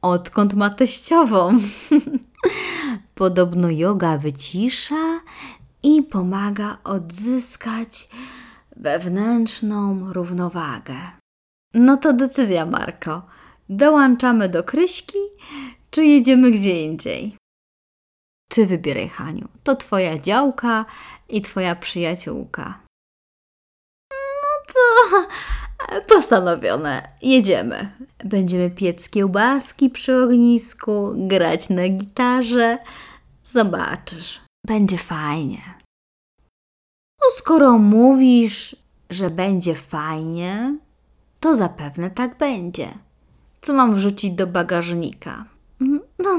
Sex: female